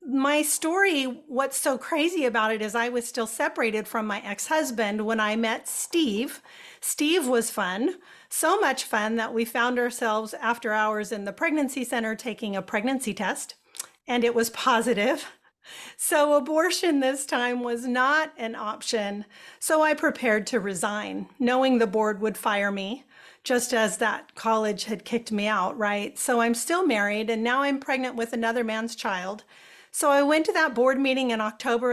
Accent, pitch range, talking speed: American, 215-270 Hz, 175 wpm